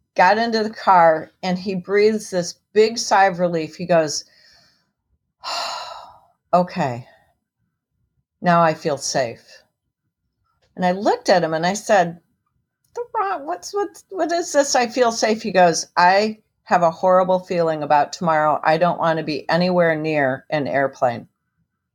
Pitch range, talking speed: 155-185 Hz, 150 wpm